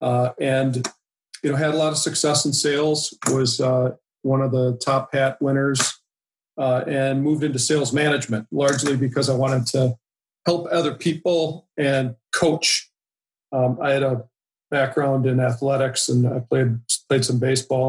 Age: 50-69